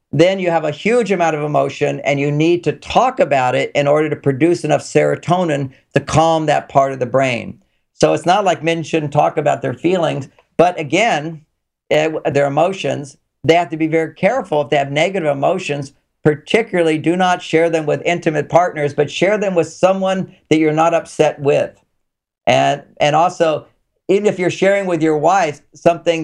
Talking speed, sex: 190 wpm, male